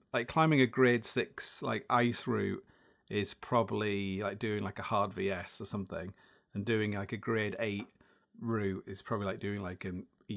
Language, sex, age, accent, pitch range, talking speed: English, male, 30-49, British, 100-140 Hz, 185 wpm